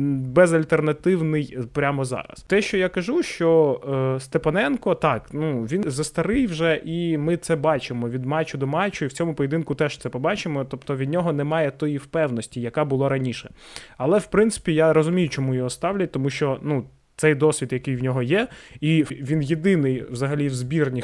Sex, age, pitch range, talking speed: male, 20-39, 130-165 Hz, 175 wpm